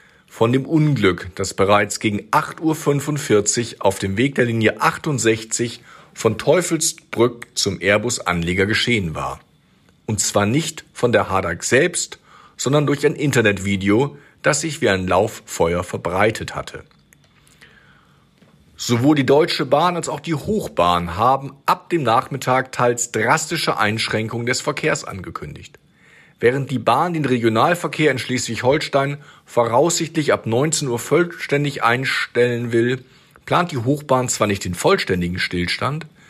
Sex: male